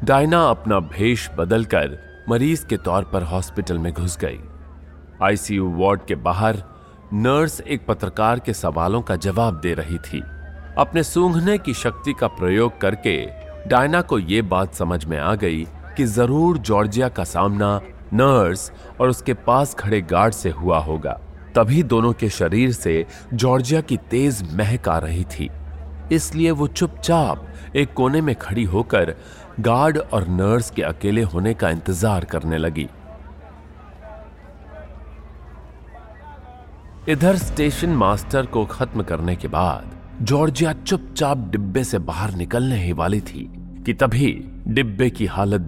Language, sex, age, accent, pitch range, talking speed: Hindi, male, 30-49, native, 80-120 Hz, 140 wpm